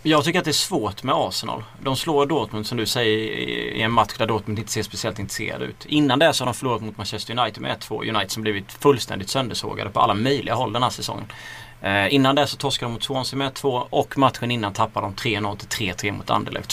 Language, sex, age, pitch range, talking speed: Swedish, male, 30-49, 110-135 Hz, 240 wpm